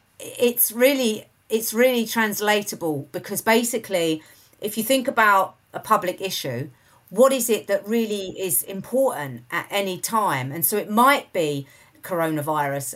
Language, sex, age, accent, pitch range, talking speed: English, female, 40-59, British, 150-210 Hz, 140 wpm